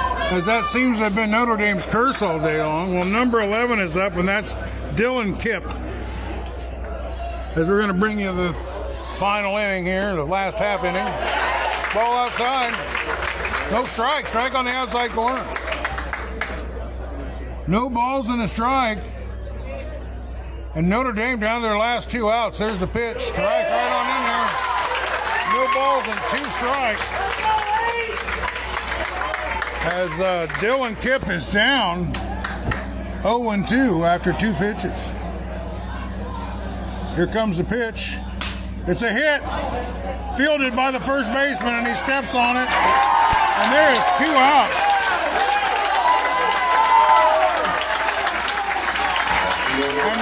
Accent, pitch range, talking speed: American, 175-260 Hz, 120 wpm